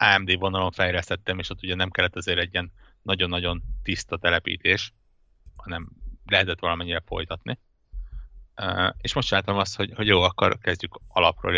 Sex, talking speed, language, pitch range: male, 145 wpm, Hungarian, 85-100 Hz